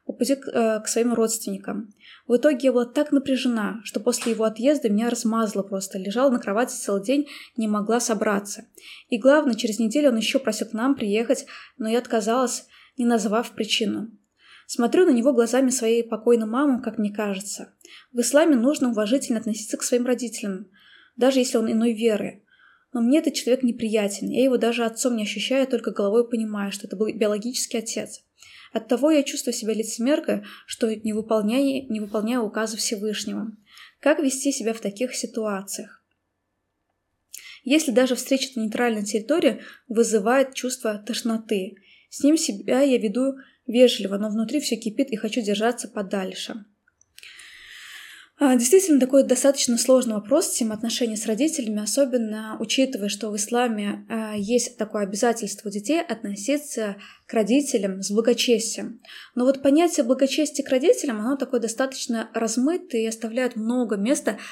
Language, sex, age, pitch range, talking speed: Russian, female, 20-39, 220-270 Hz, 150 wpm